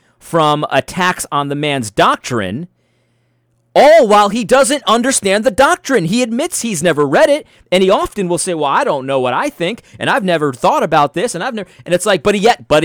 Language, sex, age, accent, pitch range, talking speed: English, male, 40-59, American, 125-200 Hz, 215 wpm